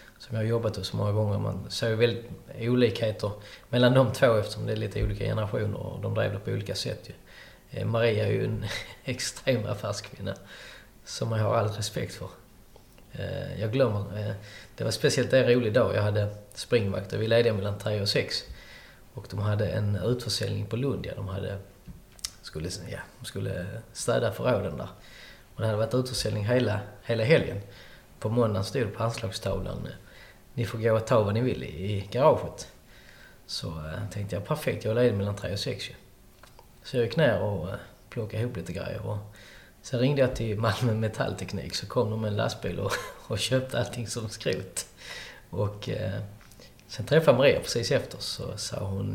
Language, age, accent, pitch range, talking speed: Swedish, 20-39, native, 100-120 Hz, 180 wpm